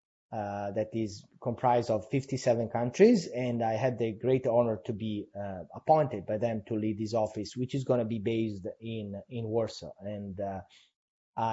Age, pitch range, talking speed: 30-49, 105-130 Hz, 175 wpm